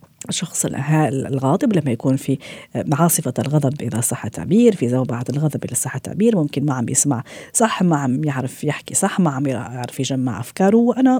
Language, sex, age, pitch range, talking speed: Arabic, female, 40-59, 140-175 Hz, 170 wpm